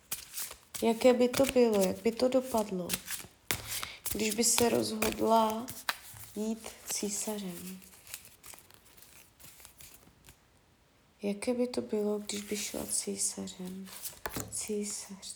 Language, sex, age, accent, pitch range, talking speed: Czech, female, 20-39, native, 195-240 Hz, 90 wpm